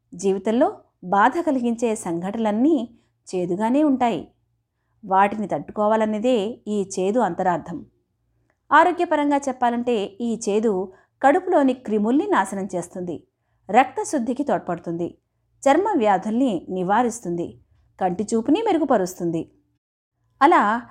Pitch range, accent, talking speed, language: 185-260 Hz, native, 75 wpm, Telugu